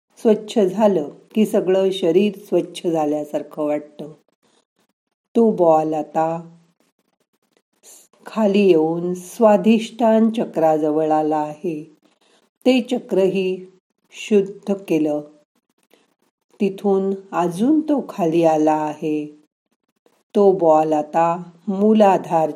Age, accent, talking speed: 50-69, native, 85 wpm